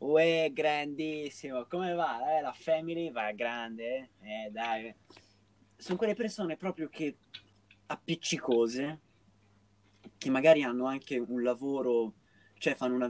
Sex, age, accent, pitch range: male, 20-39, native, 105-150 Hz